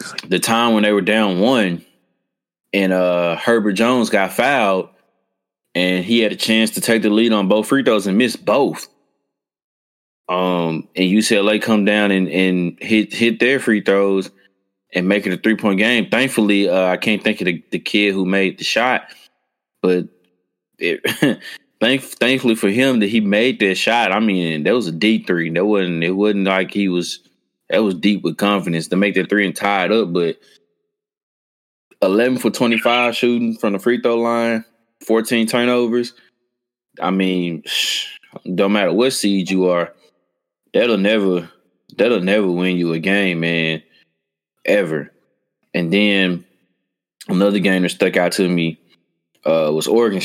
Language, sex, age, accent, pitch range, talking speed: English, male, 20-39, American, 90-110 Hz, 165 wpm